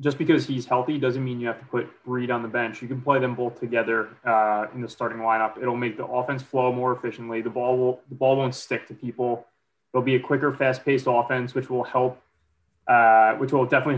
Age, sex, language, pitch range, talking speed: 20-39, male, English, 120-140 Hz, 240 wpm